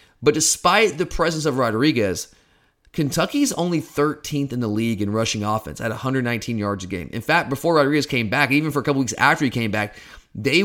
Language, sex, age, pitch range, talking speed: English, male, 30-49, 120-165 Hz, 205 wpm